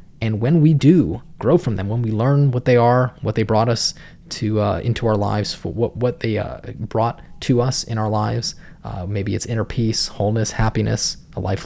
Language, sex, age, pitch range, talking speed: English, male, 20-39, 105-125 Hz, 215 wpm